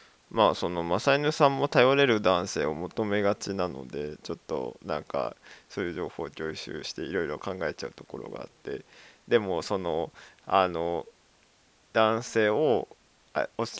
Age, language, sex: 20-39, Japanese, male